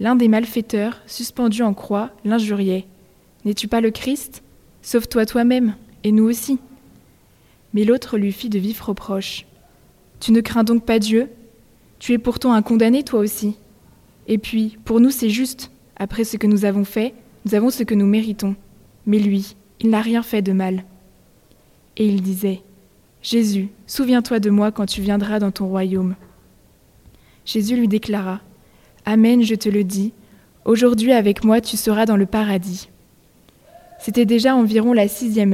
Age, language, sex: 20-39, French, female